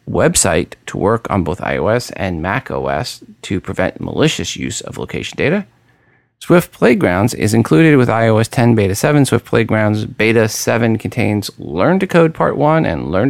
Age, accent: 40-59, American